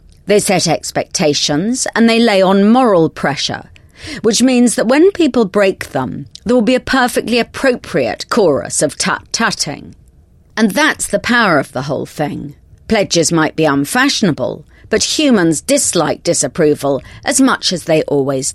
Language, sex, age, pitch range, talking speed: English, female, 40-59, 150-235 Hz, 150 wpm